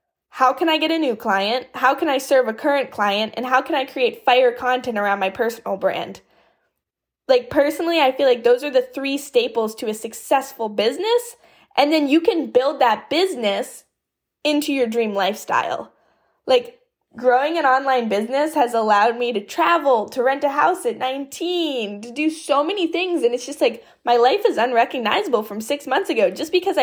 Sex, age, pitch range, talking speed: female, 10-29, 225-295 Hz, 190 wpm